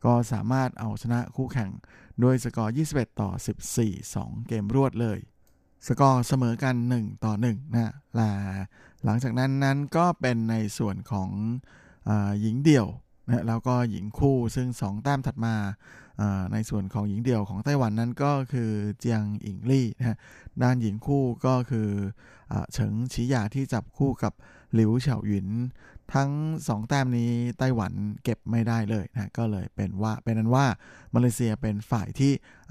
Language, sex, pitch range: Thai, male, 110-130 Hz